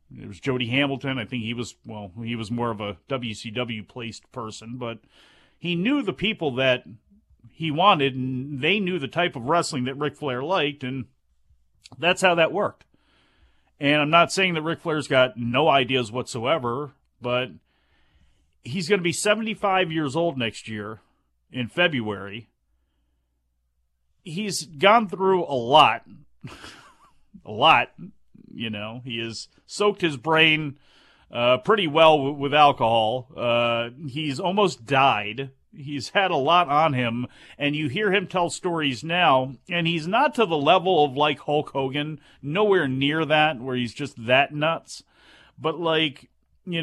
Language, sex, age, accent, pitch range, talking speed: English, male, 40-59, American, 120-165 Hz, 155 wpm